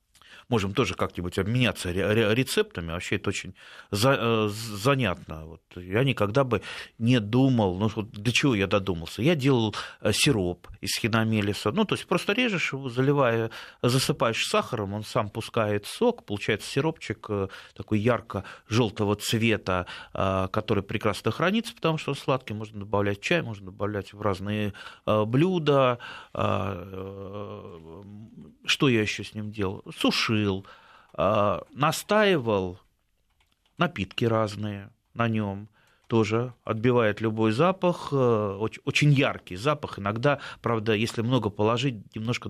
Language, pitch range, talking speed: Russian, 100-125 Hz, 120 wpm